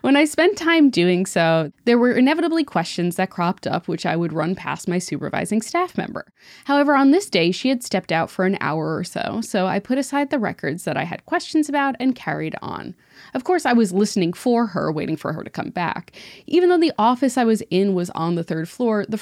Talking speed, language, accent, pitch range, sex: 235 wpm, English, American, 185-280 Hz, female